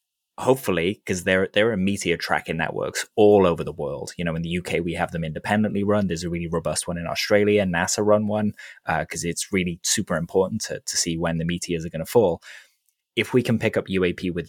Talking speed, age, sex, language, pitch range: 230 wpm, 20-39, male, English, 85-105 Hz